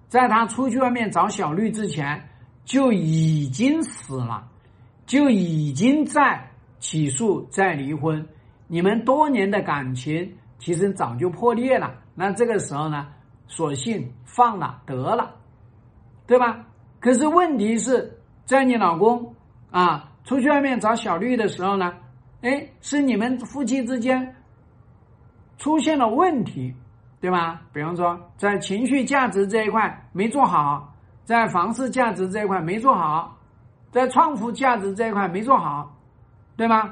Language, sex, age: Chinese, male, 50-69